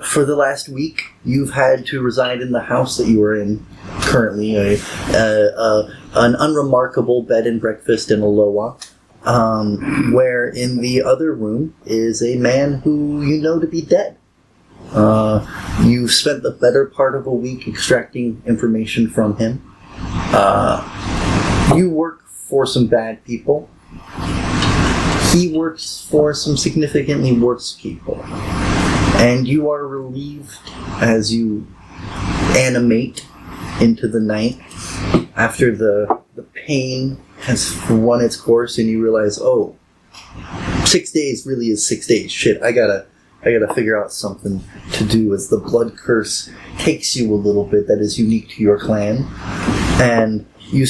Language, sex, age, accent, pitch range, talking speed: English, male, 30-49, American, 105-130 Hz, 140 wpm